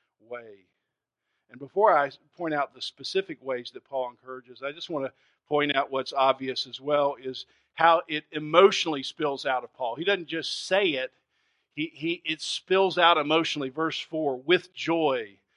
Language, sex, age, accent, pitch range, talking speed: English, male, 50-69, American, 135-165 Hz, 175 wpm